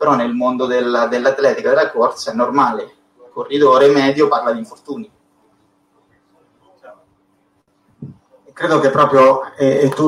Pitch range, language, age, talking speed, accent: 130-145 Hz, Italian, 30-49, 120 wpm, native